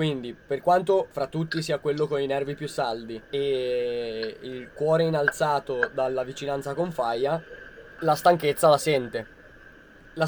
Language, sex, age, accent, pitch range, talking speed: Italian, male, 20-39, native, 130-165 Hz, 145 wpm